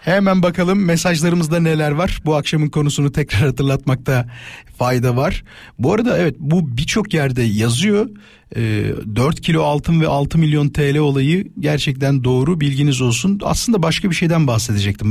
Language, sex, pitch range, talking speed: Turkish, male, 135-195 Hz, 145 wpm